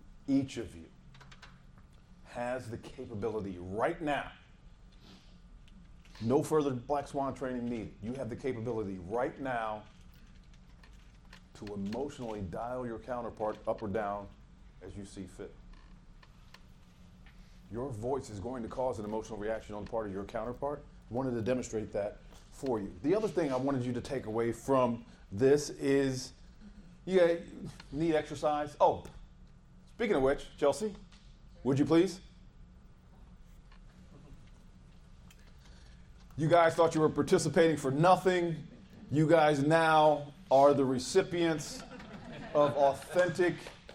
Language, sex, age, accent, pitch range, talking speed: English, male, 40-59, American, 110-160 Hz, 125 wpm